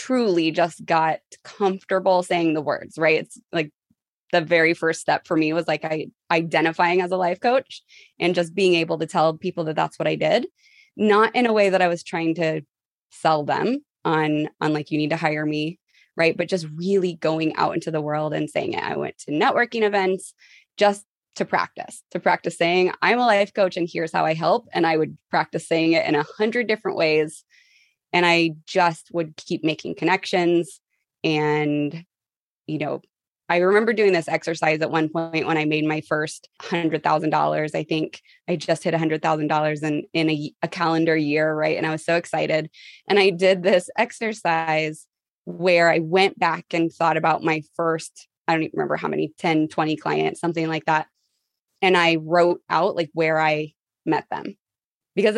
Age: 20-39